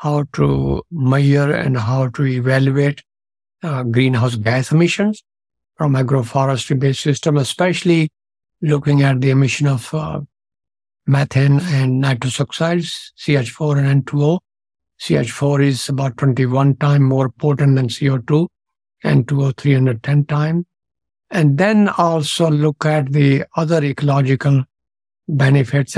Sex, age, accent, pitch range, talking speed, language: male, 60-79, Indian, 130-150 Hz, 120 wpm, English